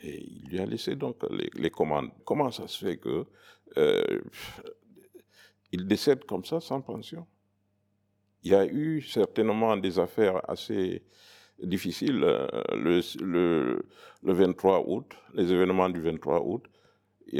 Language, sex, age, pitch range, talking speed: French, male, 60-79, 100-115 Hz, 140 wpm